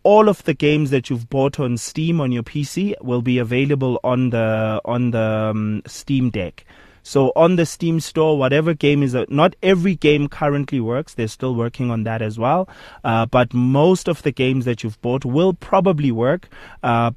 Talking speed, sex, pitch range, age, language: 195 wpm, male, 115-145 Hz, 20-39, English